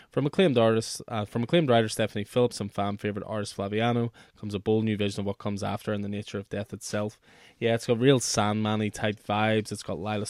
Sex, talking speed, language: male, 225 wpm, English